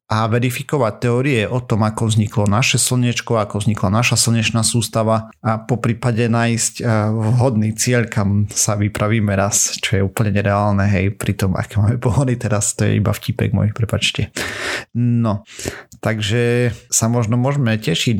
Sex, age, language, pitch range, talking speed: male, 40-59, Slovak, 105-120 Hz, 155 wpm